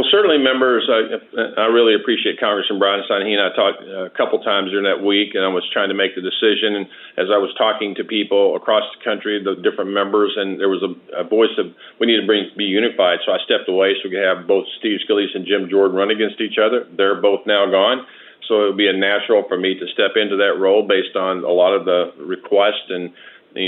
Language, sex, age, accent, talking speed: English, male, 40-59, American, 245 wpm